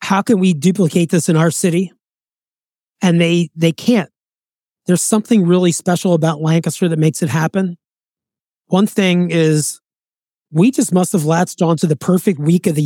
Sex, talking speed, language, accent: male, 170 wpm, English, American